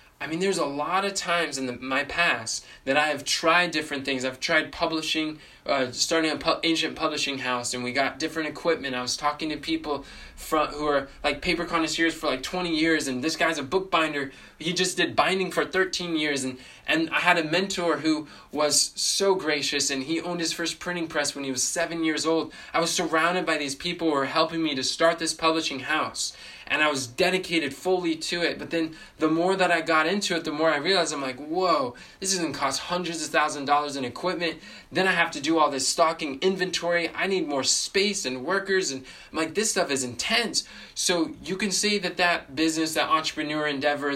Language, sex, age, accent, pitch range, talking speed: English, male, 20-39, American, 145-170 Hz, 225 wpm